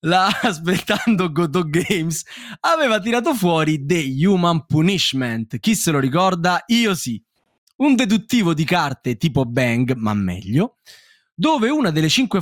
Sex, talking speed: male, 135 wpm